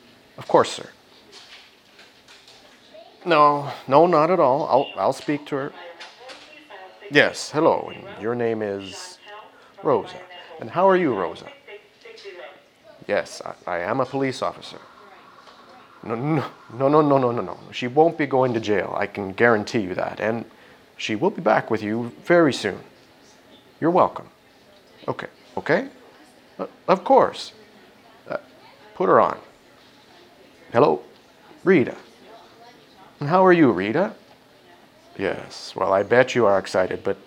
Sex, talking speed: male, 135 wpm